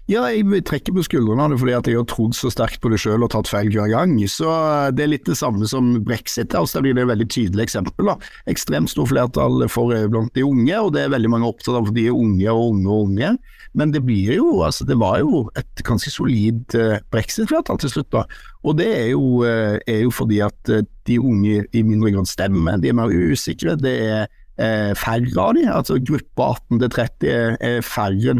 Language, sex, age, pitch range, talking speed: English, male, 60-79, 110-140 Hz, 230 wpm